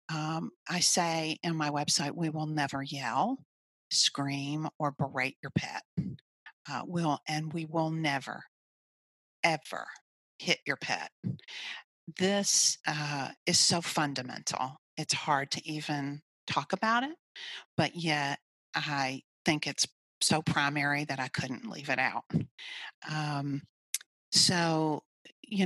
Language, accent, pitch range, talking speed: English, American, 140-170 Hz, 125 wpm